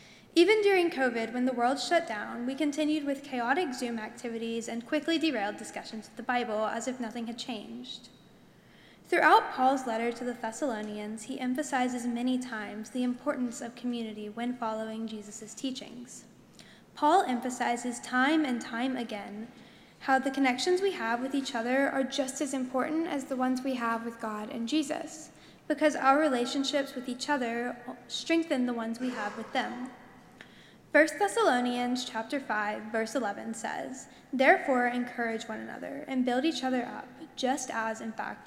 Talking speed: 160 wpm